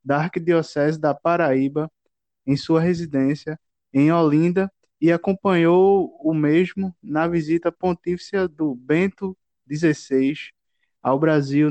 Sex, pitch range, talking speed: male, 150-185 Hz, 110 wpm